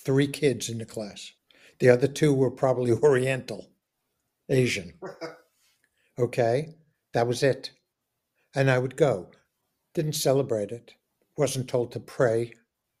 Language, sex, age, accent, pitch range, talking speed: English, male, 60-79, American, 120-150 Hz, 125 wpm